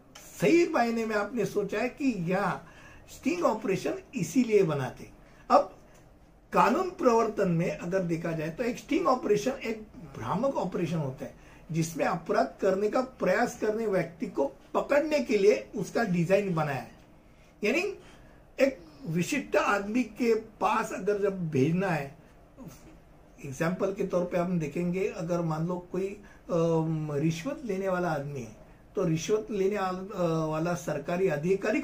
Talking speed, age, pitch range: 135 wpm, 60-79, 170-225 Hz